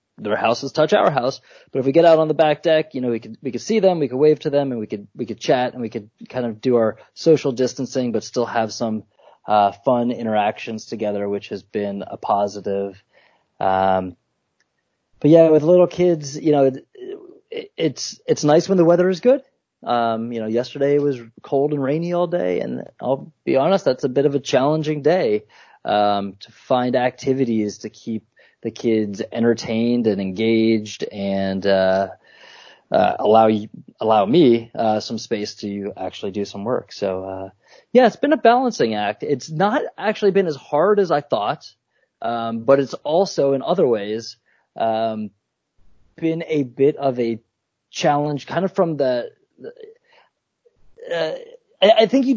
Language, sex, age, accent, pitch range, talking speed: English, male, 20-39, American, 110-175 Hz, 180 wpm